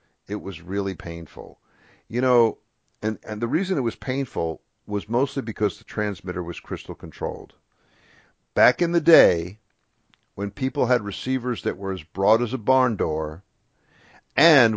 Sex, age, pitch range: male, 50-69, 95-120 Hz